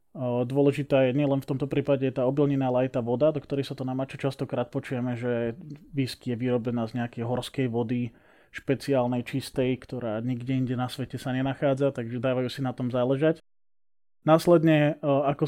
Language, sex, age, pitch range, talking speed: Slovak, male, 20-39, 120-140 Hz, 170 wpm